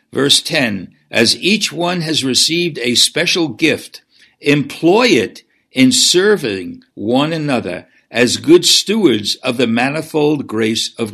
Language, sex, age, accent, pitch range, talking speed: English, male, 60-79, American, 115-155 Hz, 130 wpm